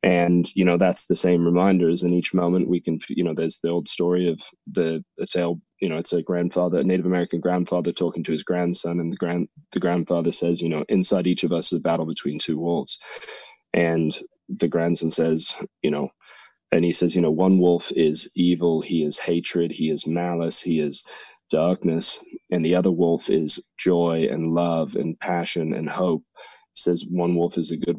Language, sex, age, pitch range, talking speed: English, male, 20-39, 85-90 Hz, 200 wpm